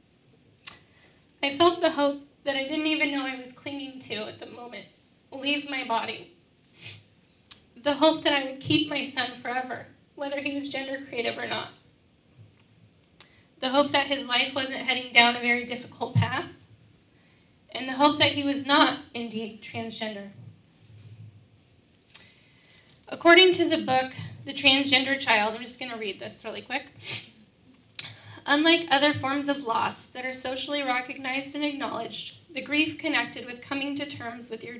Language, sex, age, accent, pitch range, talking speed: English, female, 10-29, American, 235-285 Hz, 155 wpm